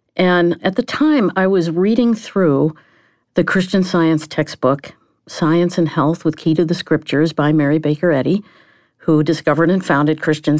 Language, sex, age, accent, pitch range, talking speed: English, female, 50-69, American, 160-200 Hz, 165 wpm